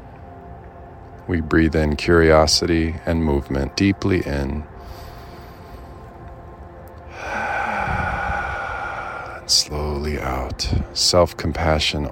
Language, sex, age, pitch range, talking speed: English, male, 40-59, 75-100 Hz, 60 wpm